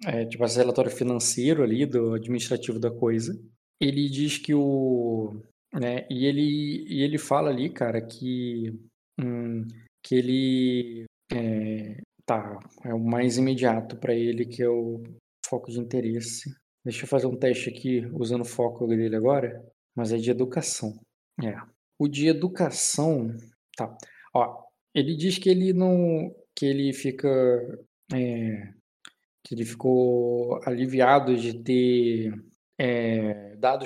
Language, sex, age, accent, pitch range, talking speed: Portuguese, male, 20-39, Brazilian, 115-135 Hz, 140 wpm